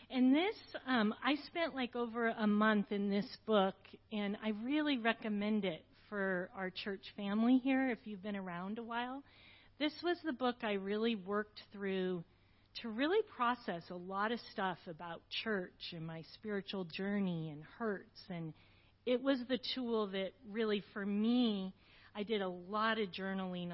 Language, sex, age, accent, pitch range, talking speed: English, female, 40-59, American, 185-230 Hz, 165 wpm